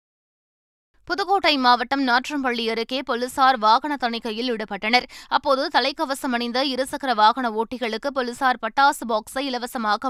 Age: 20-39